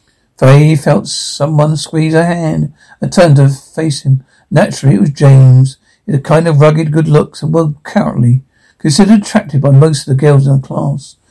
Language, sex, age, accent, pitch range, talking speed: English, male, 60-79, British, 135-165 Hz, 190 wpm